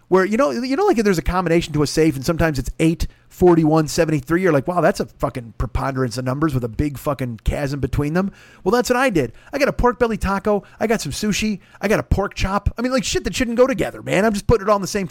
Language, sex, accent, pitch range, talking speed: English, male, American, 130-180 Hz, 290 wpm